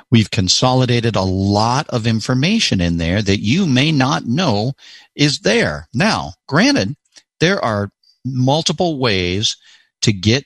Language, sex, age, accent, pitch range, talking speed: English, male, 50-69, American, 90-115 Hz, 130 wpm